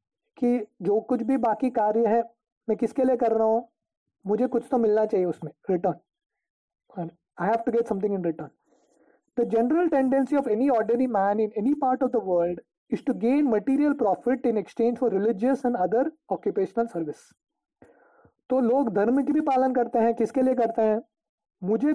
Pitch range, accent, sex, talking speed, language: 210-260 Hz, Indian, male, 180 wpm, English